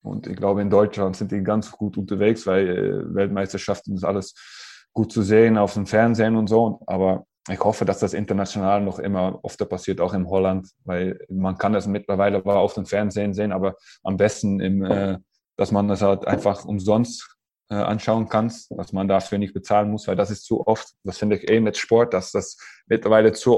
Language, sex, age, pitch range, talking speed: German, male, 20-39, 100-110 Hz, 200 wpm